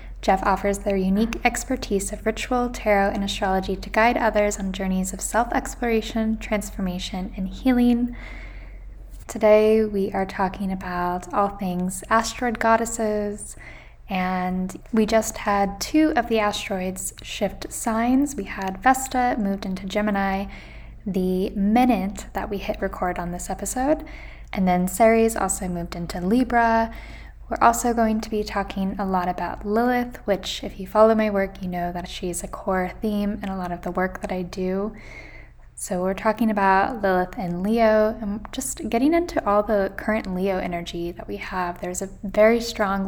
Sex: female